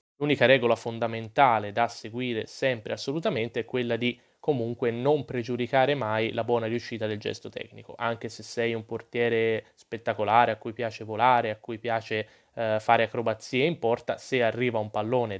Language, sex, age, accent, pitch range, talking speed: Italian, male, 20-39, native, 115-135 Hz, 165 wpm